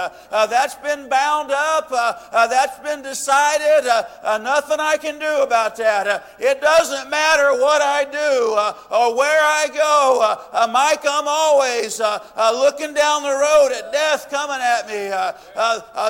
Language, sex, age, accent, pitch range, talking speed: English, male, 50-69, American, 220-290 Hz, 185 wpm